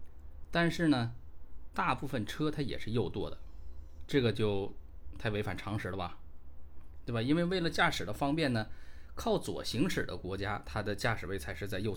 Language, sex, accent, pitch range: Chinese, male, native, 75-110 Hz